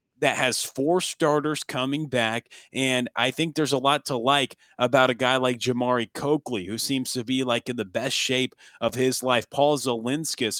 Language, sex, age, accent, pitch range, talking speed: English, male, 30-49, American, 120-145 Hz, 195 wpm